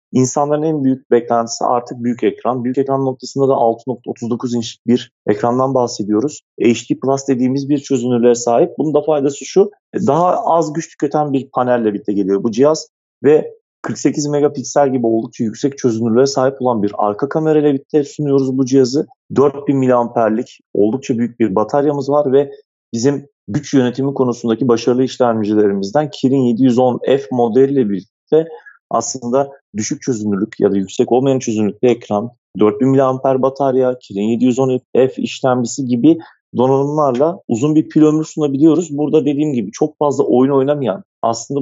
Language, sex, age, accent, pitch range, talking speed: Turkish, male, 40-59, native, 120-145 Hz, 145 wpm